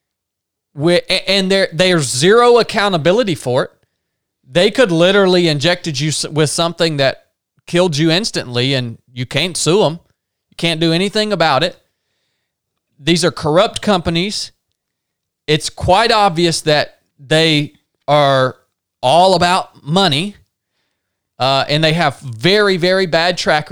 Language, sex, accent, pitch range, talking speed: English, male, American, 155-235 Hz, 125 wpm